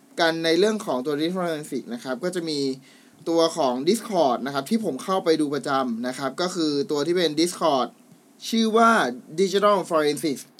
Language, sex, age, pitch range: Thai, male, 20-39, 150-210 Hz